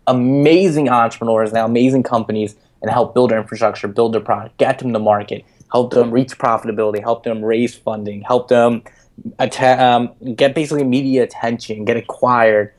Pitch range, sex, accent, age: 110-130 Hz, male, American, 20-39